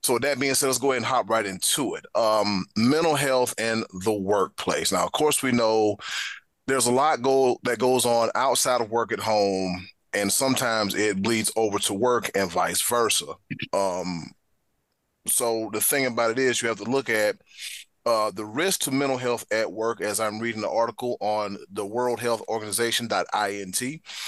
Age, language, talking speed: 30-49, English, 190 wpm